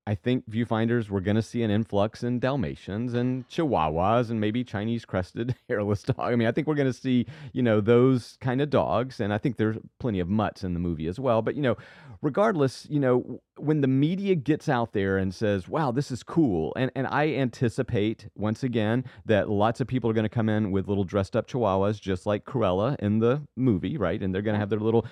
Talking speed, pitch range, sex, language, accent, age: 230 wpm, 105-135 Hz, male, English, American, 30-49